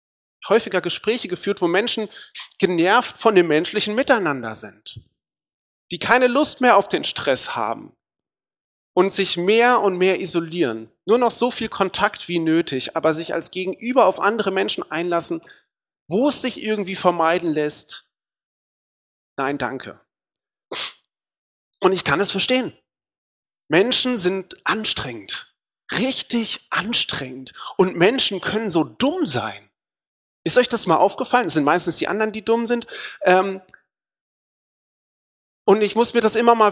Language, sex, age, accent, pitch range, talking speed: German, male, 40-59, German, 175-225 Hz, 135 wpm